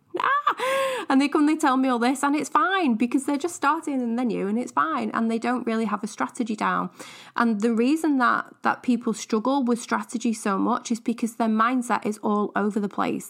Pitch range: 200-245 Hz